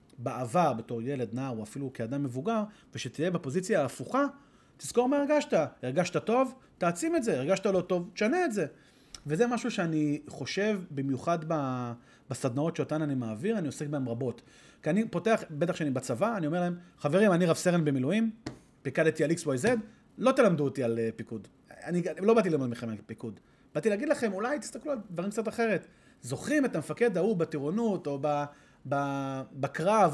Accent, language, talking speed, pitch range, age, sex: native, Hebrew, 145 wpm, 140-215 Hz, 30-49, male